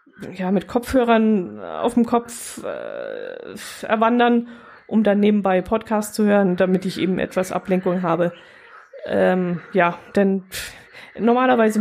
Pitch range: 190-225 Hz